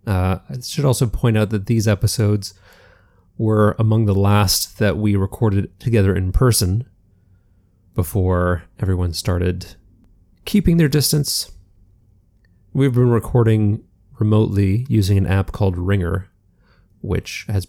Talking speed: 120 wpm